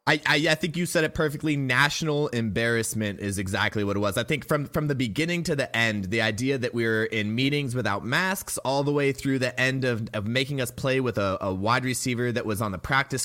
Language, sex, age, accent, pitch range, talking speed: English, male, 20-39, American, 120-150 Hz, 245 wpm